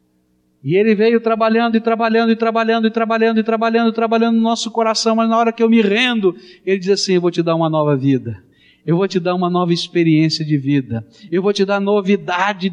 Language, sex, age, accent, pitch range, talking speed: Portuguese, male, 60-79, Brazilian, 115-185 Hz, 235 wpm